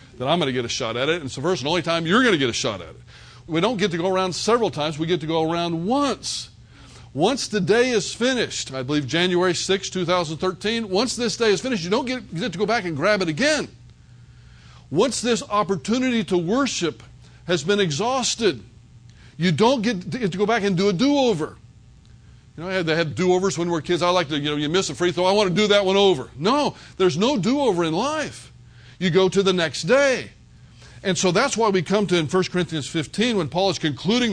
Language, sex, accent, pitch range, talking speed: English, male, American, 155-215 Hz, 250 wpm